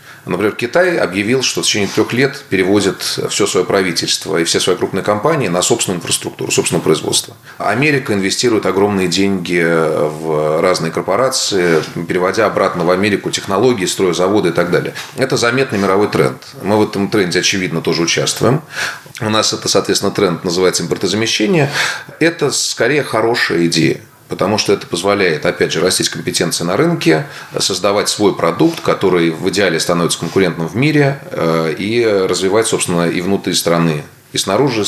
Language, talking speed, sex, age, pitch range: Russian, 155 wpm, male, 30-49, 85-110 Hz